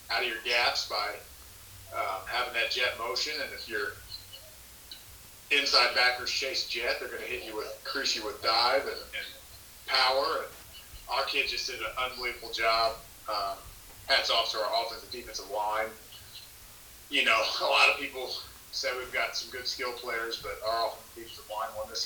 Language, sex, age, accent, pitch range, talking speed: English, male, 30-49, American, 105-130 Hz, 180 wpm